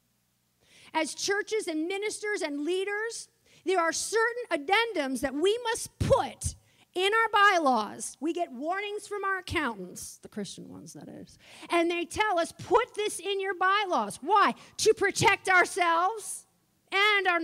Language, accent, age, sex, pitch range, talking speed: English, American, 40-59, female, 300-405 Hz, 150 wpm